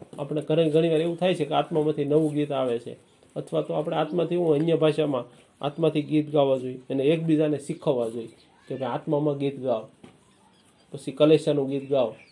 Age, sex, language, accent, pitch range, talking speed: 40-59, male, Gujarati, native, 135-165 Hz, 170 wpm